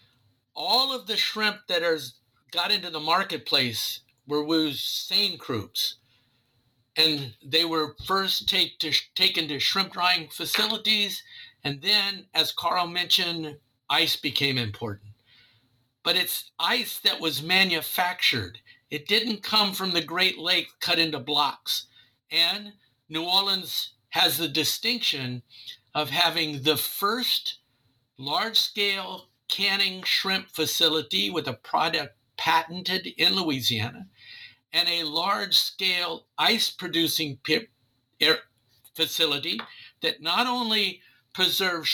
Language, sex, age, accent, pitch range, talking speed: English, male, 50-69, American, 140-195 Hz, 115 wpm